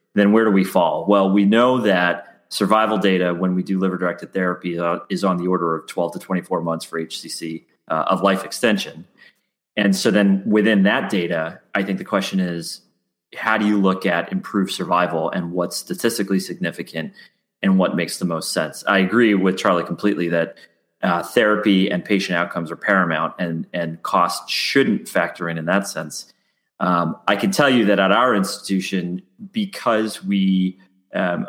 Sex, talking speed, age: male, 180 wpm, 30-49